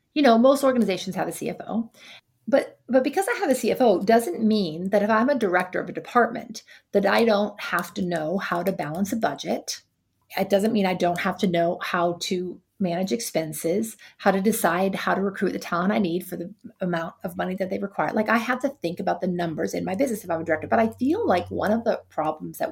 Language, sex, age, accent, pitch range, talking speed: English, female, 40-59, American, 180-235 Hz, 235 wpm